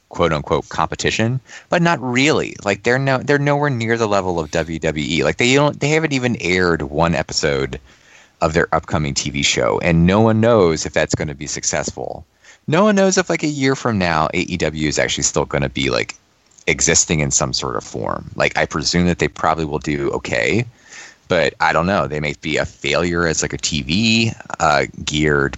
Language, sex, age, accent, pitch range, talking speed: English, male, 20-39, American, 75-100 Hz, 205 wpm